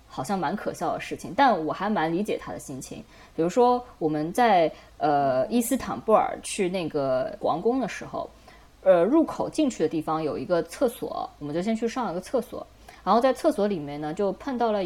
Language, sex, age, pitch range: Chinese, female, 20-39, 170-240 Hz